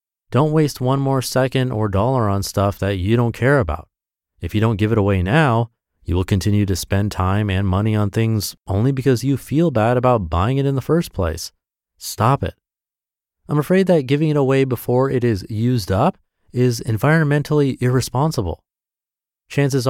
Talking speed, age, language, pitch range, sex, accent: 180 wpm, 30-49, English, 95-135 Hz, male, American